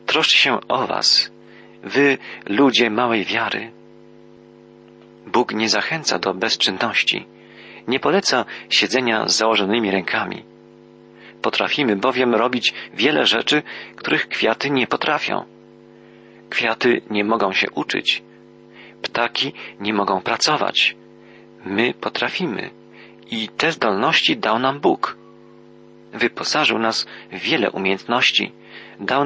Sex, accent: male, native